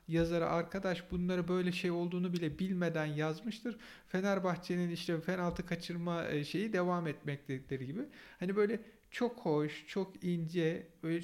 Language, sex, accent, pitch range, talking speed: Turkish, male, native, 140-175 Hz, 135 wpm